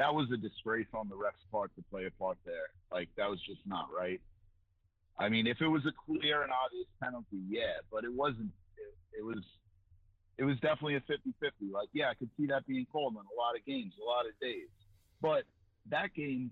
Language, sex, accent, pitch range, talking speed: English, male, American, 95-120 Hz, 220 wpm